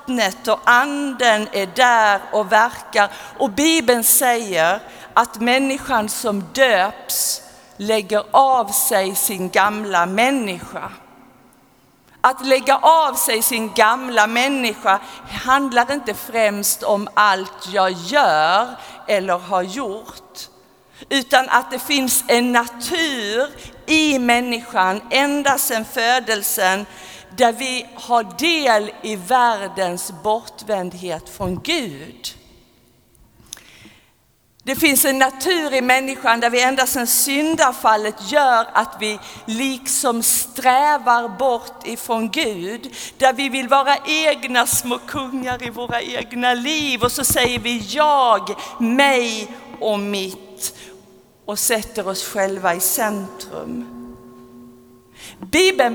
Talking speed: 110 wpm